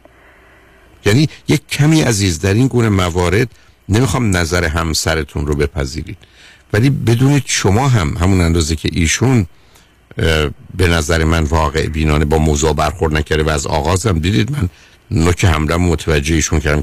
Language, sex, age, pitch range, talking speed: Persian, male, 50-69, 80-120 Hz, 145 wpm